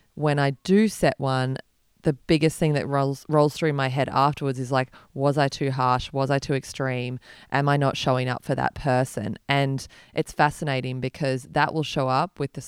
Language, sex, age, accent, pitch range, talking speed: English, female, 20-39, Australian, 130-155 Hz, 205 wpm